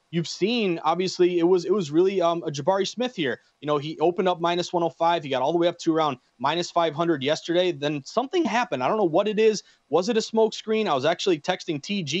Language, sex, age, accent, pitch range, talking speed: English, male, 30-49, American, 155-195 Hz, 240 wpm